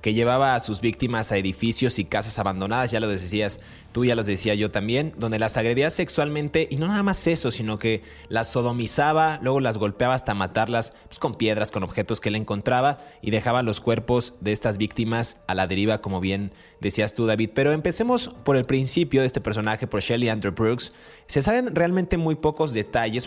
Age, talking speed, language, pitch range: 30-49, 200 wpm, Spanish, 105-135 Hz